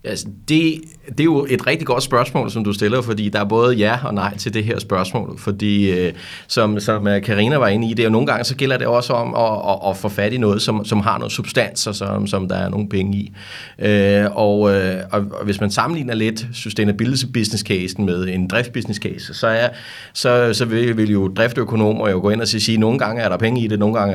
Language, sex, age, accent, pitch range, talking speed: Danish, male, 30-49, native, 100-120 Hz, 230 wpm